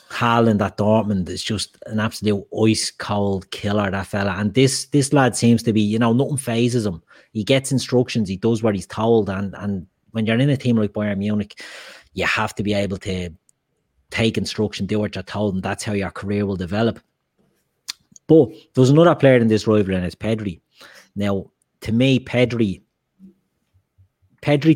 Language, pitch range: English, 100-120 Hz